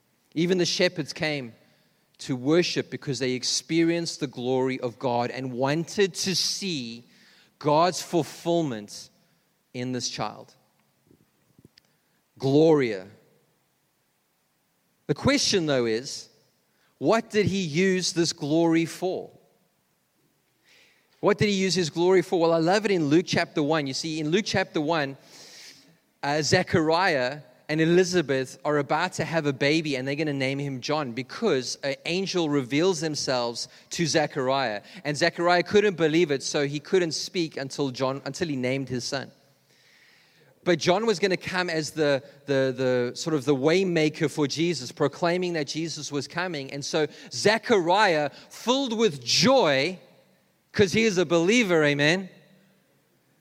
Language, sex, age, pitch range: English, male, 30-49, 140-175 Hz